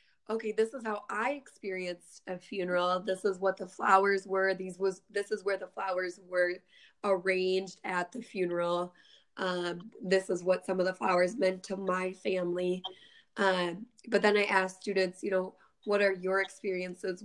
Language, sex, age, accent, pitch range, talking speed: English, female, 20-39, American, 180-195 Hz, 175 wpm